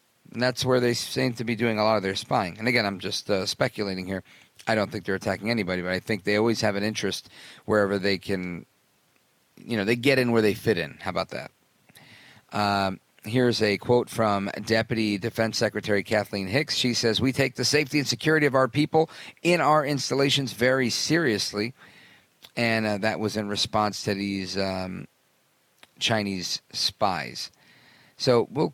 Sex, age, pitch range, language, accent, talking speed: male, 40-59, 100-125 Hz, English, American, 185 wpm